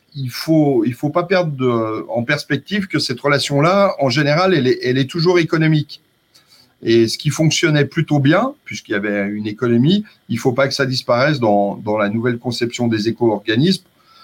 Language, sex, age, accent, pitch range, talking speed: French, male, 40-59, French, 115-155 Hz, 190 wpm